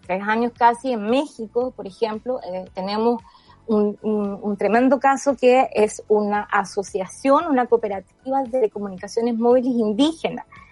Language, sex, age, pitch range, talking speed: Spanish, female, 20-39, 205-245 Hz, 135 wpm